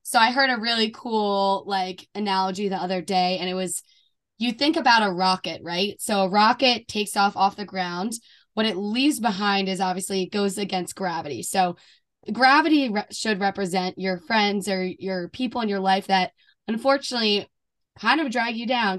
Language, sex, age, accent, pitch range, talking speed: English, female, 20-39, American, 190-220 Hz, 185 wpm